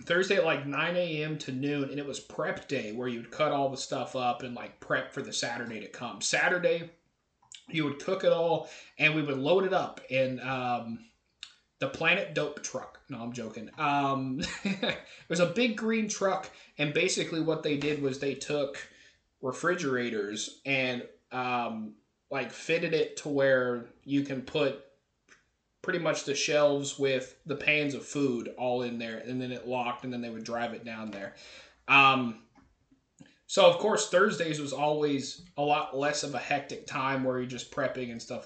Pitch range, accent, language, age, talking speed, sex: 125-155 Hz, American, English, 30-49, 185 wpm, male